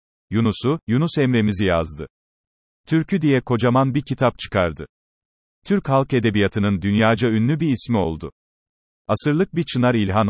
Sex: male